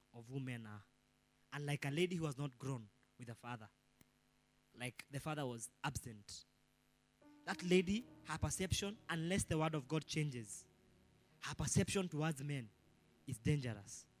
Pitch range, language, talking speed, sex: 130-190 Hz, English, 145 wpm, male